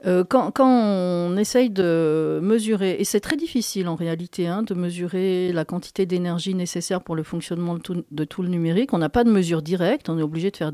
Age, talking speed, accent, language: 50-69, 210 wpm, French, French